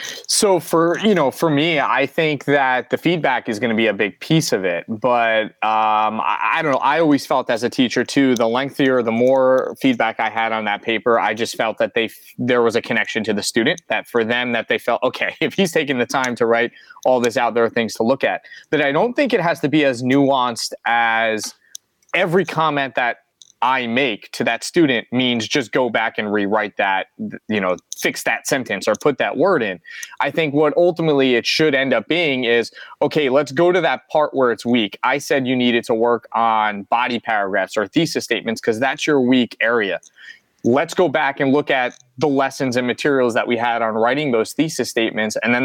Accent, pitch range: American, 115-150 Hz